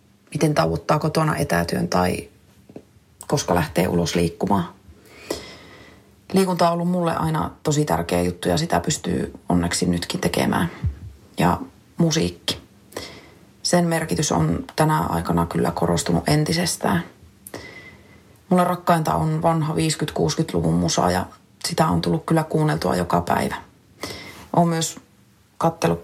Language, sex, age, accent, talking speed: Finnish, female, 30-49, native, 115 wpm